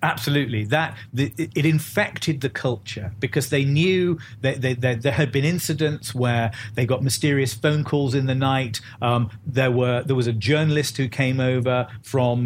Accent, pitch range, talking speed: British, 115-150 Hz, 180 wpm